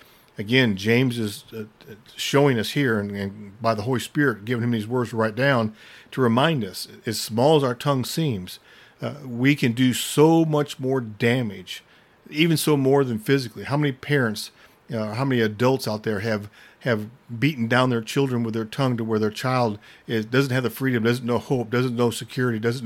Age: 50-69